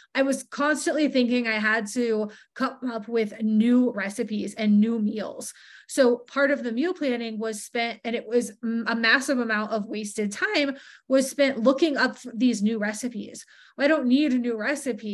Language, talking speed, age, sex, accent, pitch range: English, 180 wpm, 20-39, female, American, 220-260 Hz